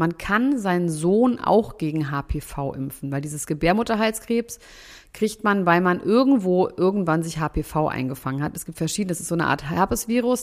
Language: German